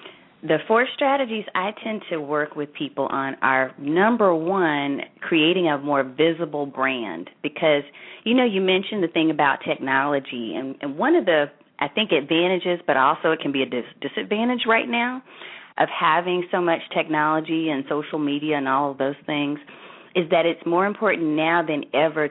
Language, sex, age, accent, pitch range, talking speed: English, female, 30-49, American, 145-195 Hz, 180 wpm